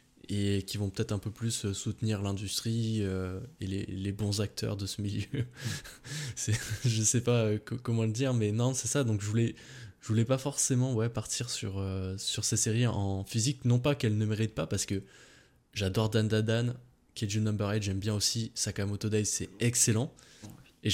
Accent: French